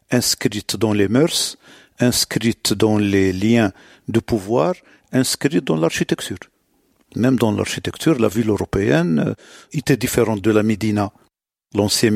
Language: French